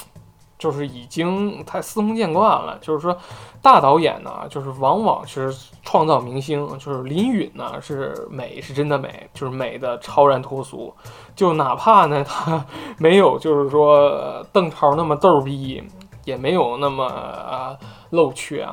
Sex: male